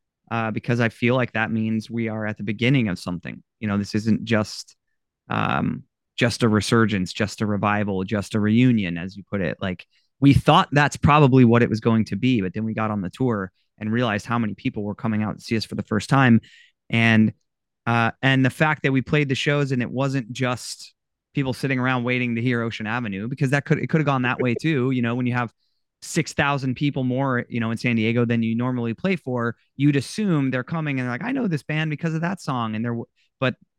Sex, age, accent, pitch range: male, 20-39, American, 110-130 Hz